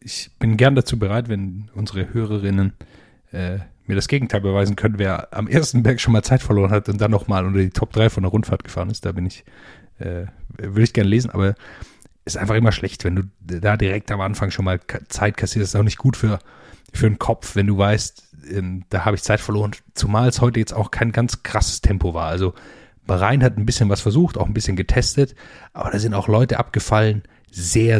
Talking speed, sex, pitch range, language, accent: 225 wpm, male, 95-110 Hz, German, German